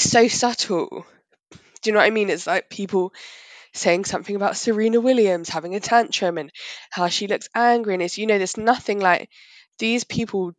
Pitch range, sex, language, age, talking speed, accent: 175-220 Hz, female, English, 20-39, 185 wpm, British